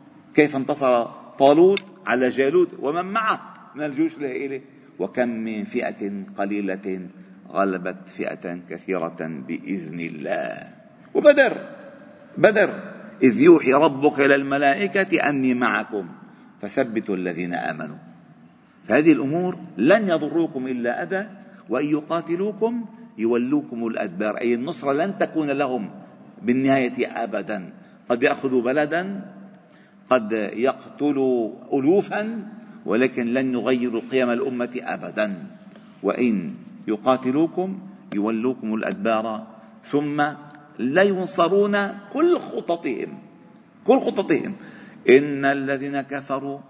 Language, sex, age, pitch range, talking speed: Arabic, male, 50-69, 130-205 Hz, 95 wpm